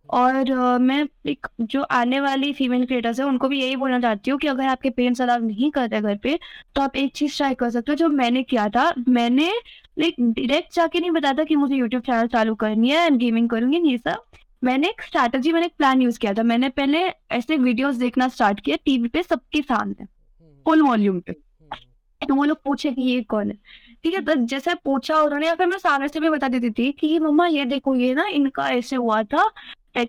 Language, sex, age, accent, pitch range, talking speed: Hindi, female, 20-39, native, 240-300 Hz, 170 wpm